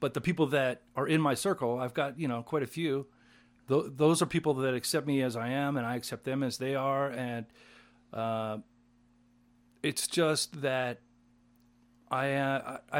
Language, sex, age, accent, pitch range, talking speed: English, male, 40-59, American, 120-145 Hz, 180 wpm